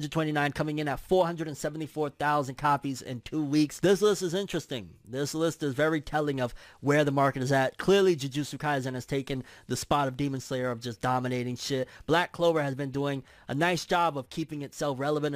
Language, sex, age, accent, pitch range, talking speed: English, male, 20-39, American, 125-155 Hz, 195 wpm